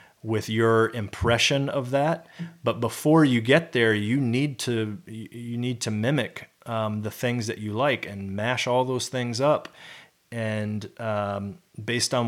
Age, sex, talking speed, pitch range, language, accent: 30-49, male, 160 wpm, 100-120 Hz, English, American